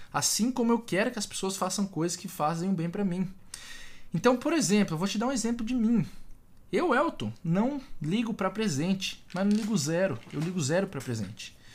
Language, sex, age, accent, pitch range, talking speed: Portuguese, male, 20-39, Brazilian, 140-210 Hz, 215 wpm